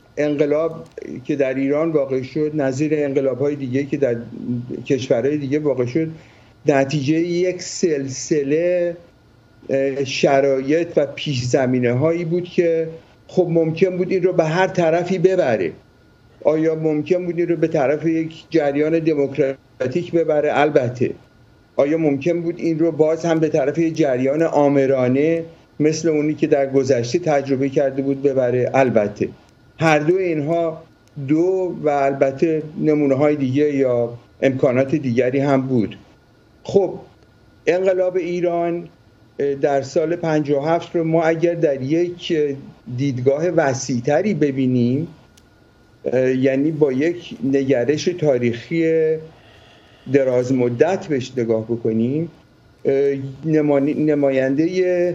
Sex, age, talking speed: male, 50-69, 115 wpm